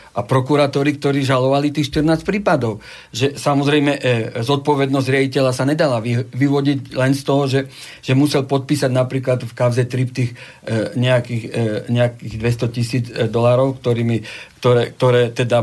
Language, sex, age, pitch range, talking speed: Slovak, male, 50-69, 125-150 Hz, 145 wpm